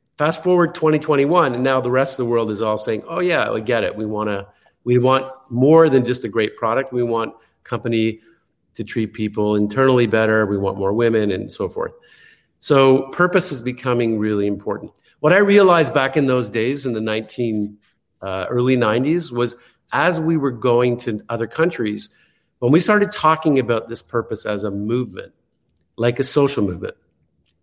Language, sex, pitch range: English, male, 110-140 Hz